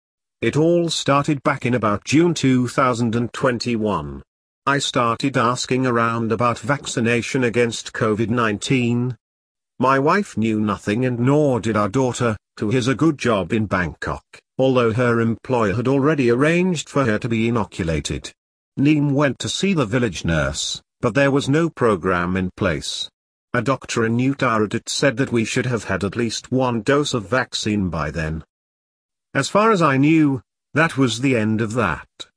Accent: British